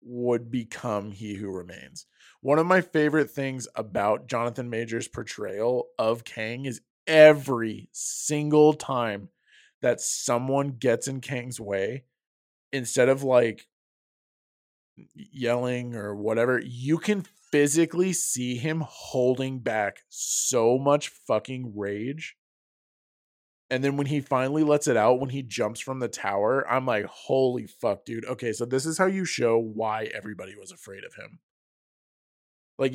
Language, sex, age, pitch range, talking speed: English, male, 20-39, 115-145 Hz, 140 wpm